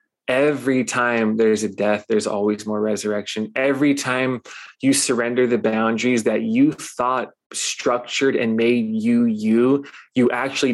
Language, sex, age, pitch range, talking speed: English, male, 20-39, 115-140 Hz, 140 wpm